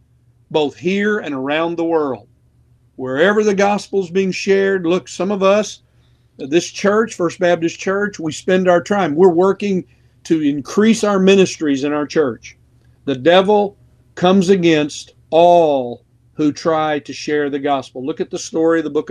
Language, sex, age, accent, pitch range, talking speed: English, male, 50-69, American, 135-180 Hz, 165 wpm